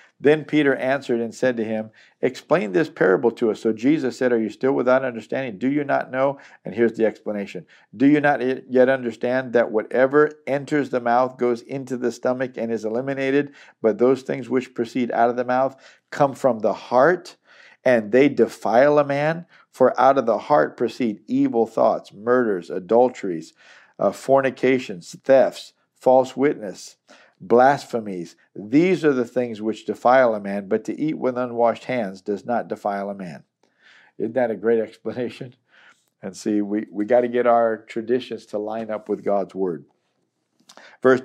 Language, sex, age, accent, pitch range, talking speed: English, male, 50-69, American, 110-135 Hz, 170 wpm